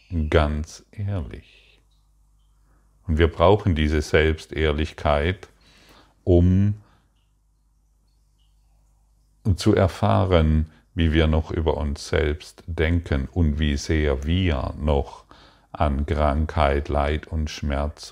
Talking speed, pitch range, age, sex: 90 wpm, 75-85 Hz, 50-69, male